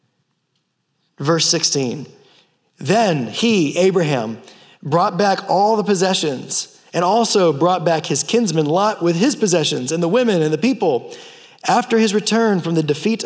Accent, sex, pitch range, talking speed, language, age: American, male, 155-205 Hz, 145 wpm, English, 30-49